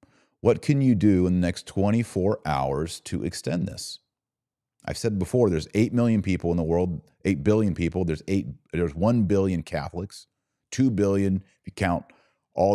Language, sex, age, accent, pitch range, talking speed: English, male, 40-59, American, 85-120 Hz, 175 wpm